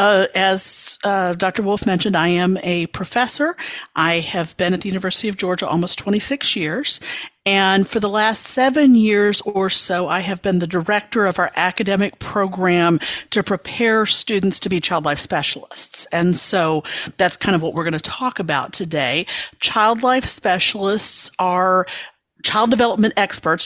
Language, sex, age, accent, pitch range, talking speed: English, female, 50-69, American, 170-205 Hz, 165 wpm